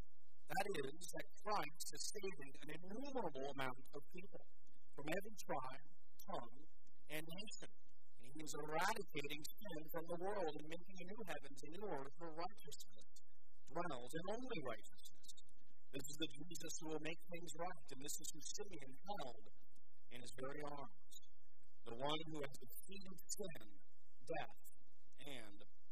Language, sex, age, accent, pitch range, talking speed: English, male, 50-69, American, 130-170 Hz, 150 wpm